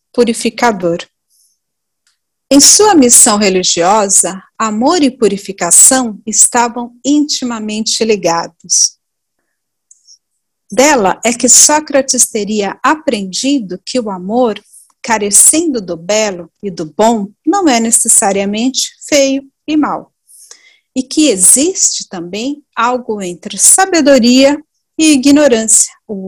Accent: Brazilian